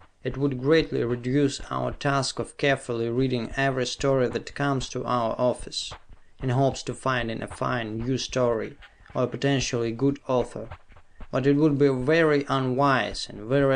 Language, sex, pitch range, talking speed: English, male, 110-145 Hz, 165 wpm